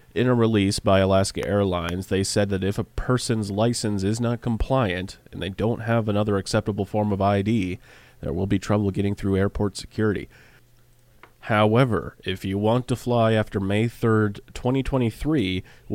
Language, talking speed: English, 160 wpm